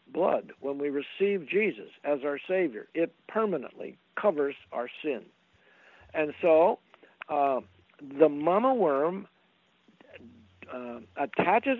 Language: English